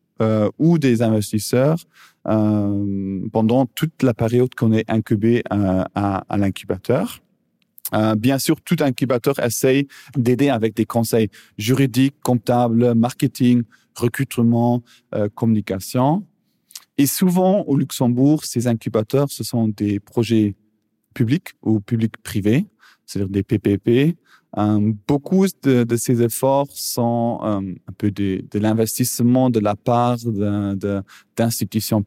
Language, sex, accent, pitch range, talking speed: French, male, French, 105-130 Hz, 125 wpm